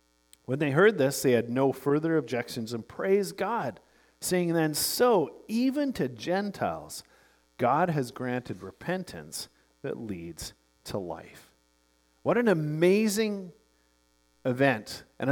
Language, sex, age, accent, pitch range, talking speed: English, male, 40-59, American, 115-170 Hz, 120 wpm